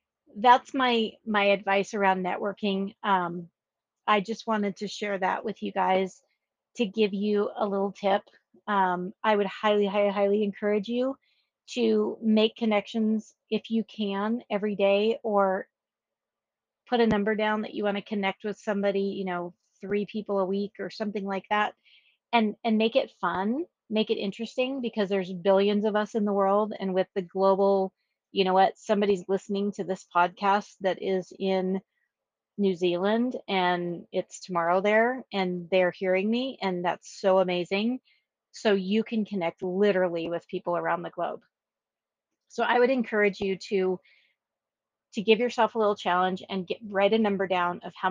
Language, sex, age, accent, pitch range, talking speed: English, female, 30-49, American, 190-215 Hz, 170 wpm